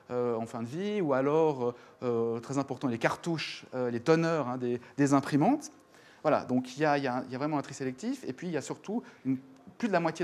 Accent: French